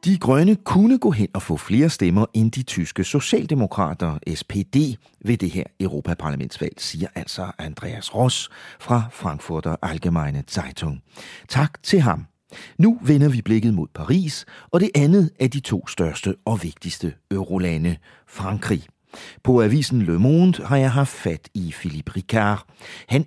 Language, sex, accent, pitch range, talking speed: English, male, Danish, 90-140 Hz, 150 wpm